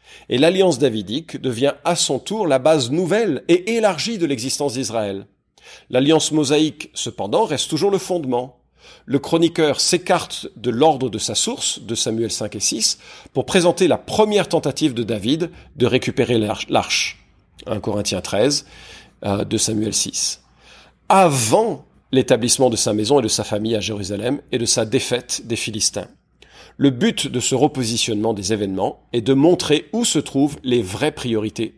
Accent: French